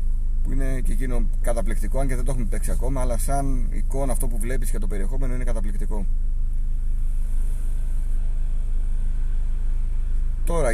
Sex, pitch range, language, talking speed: male, 75-130 Hz, Greek, 135 wpm